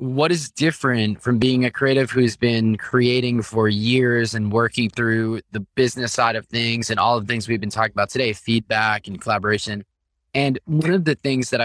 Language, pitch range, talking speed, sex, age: English, 105-135 Hz, 200 wpm, male, 20-39